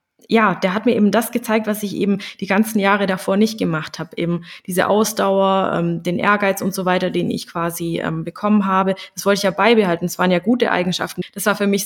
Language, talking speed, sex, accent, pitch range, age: German, 235 wpm, female, German, 170-220 Hz, 20-39